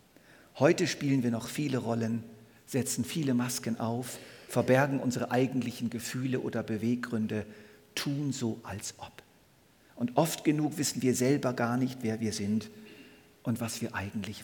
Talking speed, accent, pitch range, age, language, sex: 145 wpm, German, 110-130 Hz, 50-69, German, male